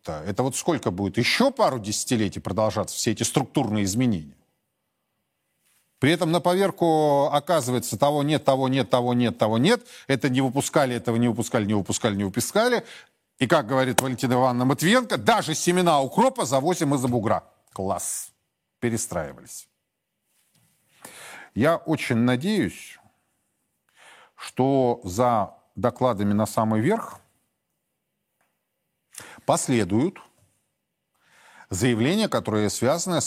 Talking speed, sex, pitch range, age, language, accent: 110 wpm, male, 105-135 Hz, 40-59, Russian, native